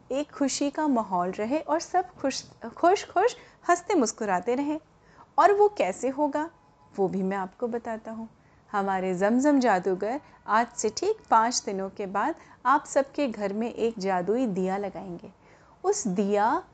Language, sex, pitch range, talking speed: Hindi, female, 215-305 Hz, 155 wpm